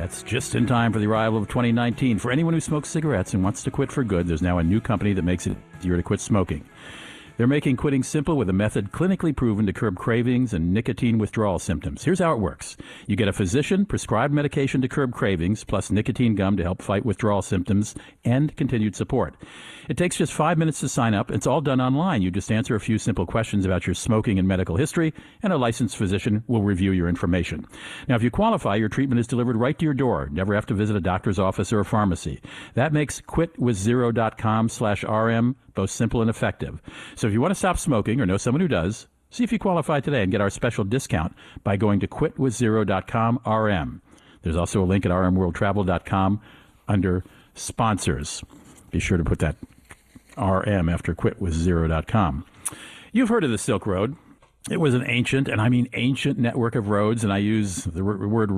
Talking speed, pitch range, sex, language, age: 205 wpm, 100-130 Hz, male, English, 50-69